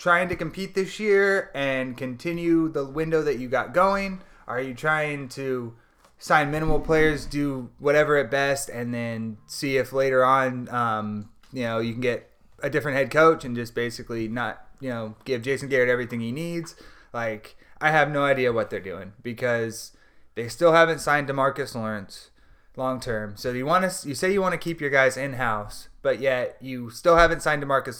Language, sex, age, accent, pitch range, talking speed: English, male, 30-49, American, 120-150 Hz, 195 wpm